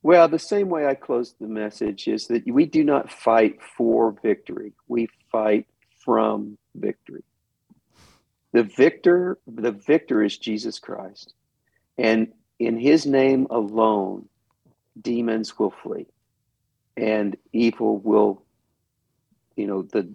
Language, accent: English, American